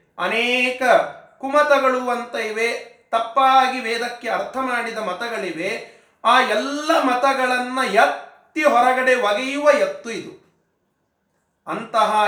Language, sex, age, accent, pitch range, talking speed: Kannada, male, 30-49, native, 175-250 Hz, 90 wpm